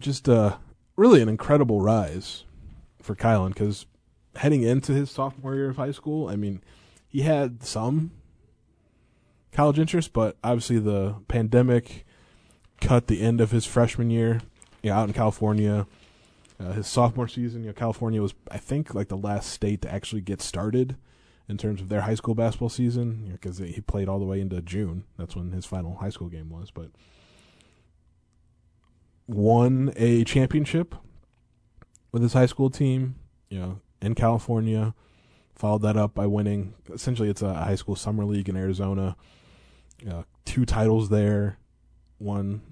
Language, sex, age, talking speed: English, male, 20-39, 155 wpm